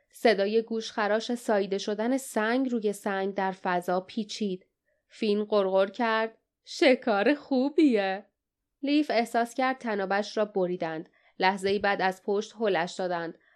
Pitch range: 190-220 Hz